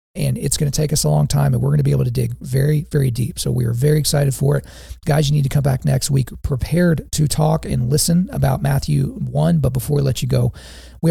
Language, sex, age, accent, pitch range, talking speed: English, male, 40-59, American, 135-165 Hz, 270 wpm